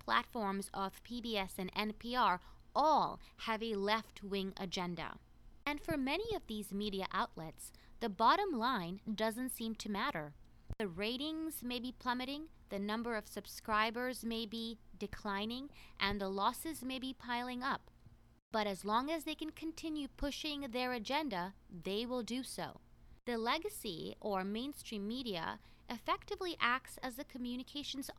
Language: English